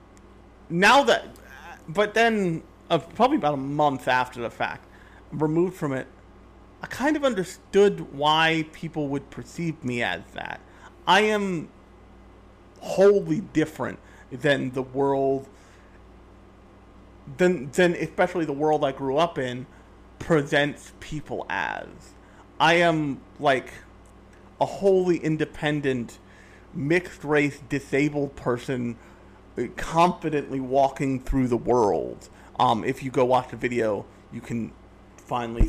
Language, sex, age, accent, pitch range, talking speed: English, male, 40-59, American, 110-170 Hz, 120 wpm